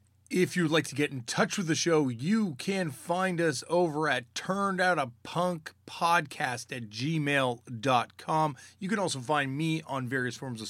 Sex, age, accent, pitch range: male, 30-49, American, 125-175 Hz